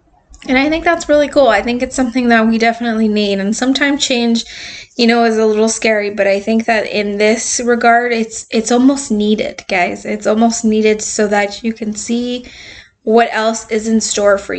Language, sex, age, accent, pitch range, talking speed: English, female, 10-29, American, 205-235 Hz, 200 wpm